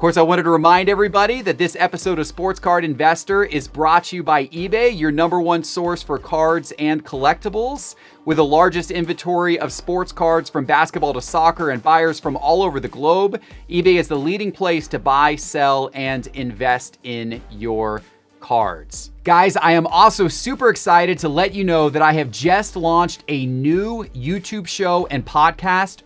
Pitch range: 145-180 Hz